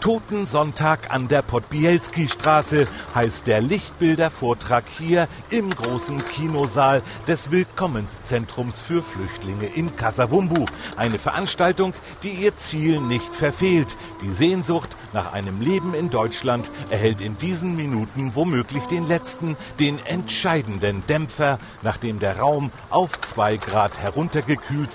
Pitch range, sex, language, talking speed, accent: 110-165 Hz, male, German, 120 wpm, German